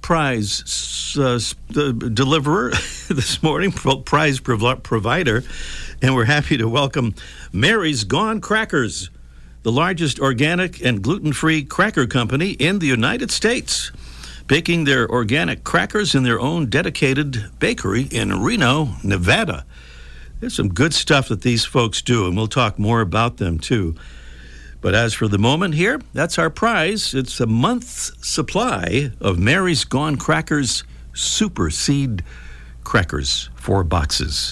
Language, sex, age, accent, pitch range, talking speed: English, male, 60-79, American, 85-140 Hz, 135 wpm